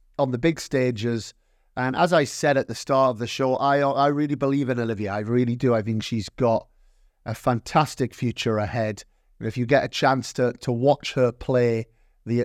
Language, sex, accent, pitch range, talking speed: English, male, British, 120-145 Hz, 205 wpm